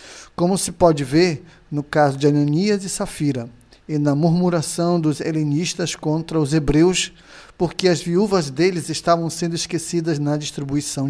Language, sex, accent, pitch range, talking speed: Portuguese, male, Brazilian, 140-170 Hz, 145 wpm